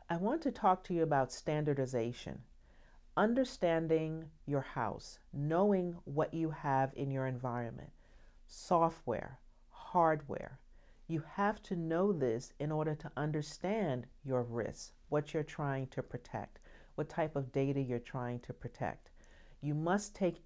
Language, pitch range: English, 140-180 Hz